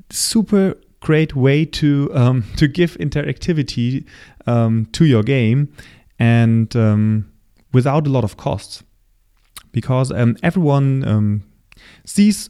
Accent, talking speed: German, 120 wpm